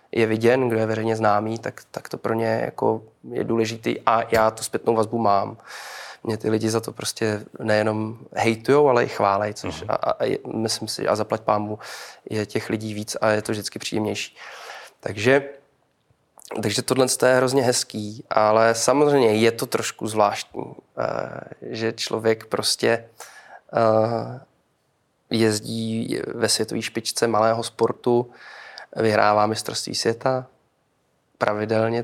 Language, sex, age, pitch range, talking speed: Czech, male, 20-39, 110-120 Hz, 135 wpm